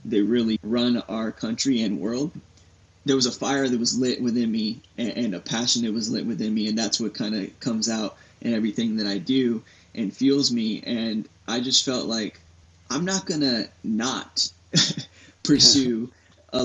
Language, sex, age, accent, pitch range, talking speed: English, male, 20-39, American, 115-135 Hz, 185 wpm